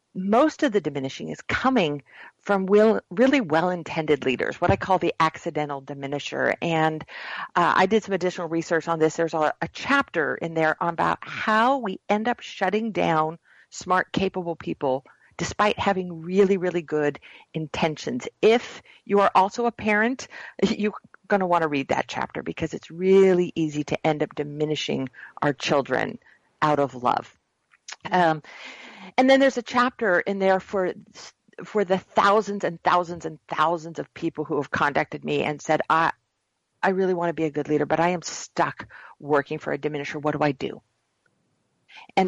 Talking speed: 170 wpm